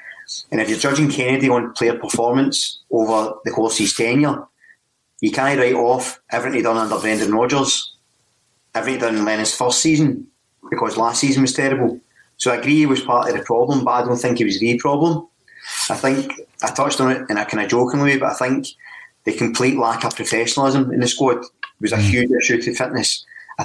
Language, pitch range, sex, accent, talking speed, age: English, 115-135 Hz, male, British, 210 wpm, 30-49